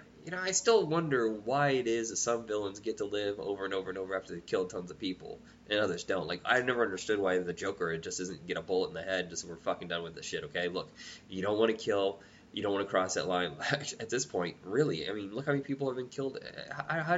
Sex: male